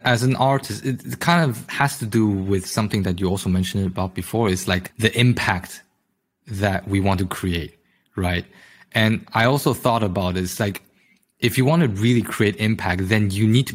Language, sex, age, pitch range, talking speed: English, male, 20-39, 95-115 Hz, 200 wpm